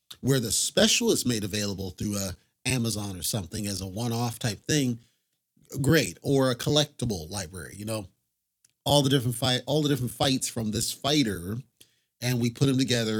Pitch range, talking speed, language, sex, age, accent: 105-135 Hz, 175 wpm, English, male, 40-59, American